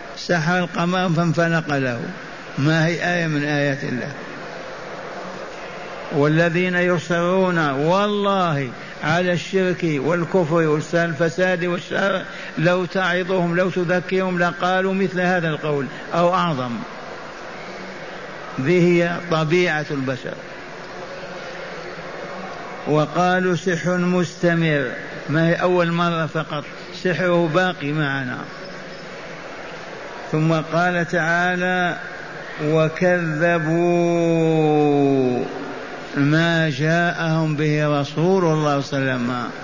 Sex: male